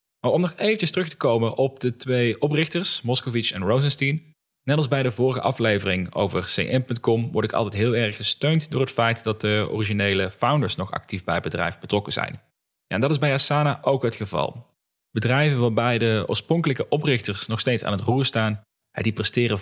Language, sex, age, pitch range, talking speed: Dutch, male, 30-49, 105-130 Hz, 195 wpm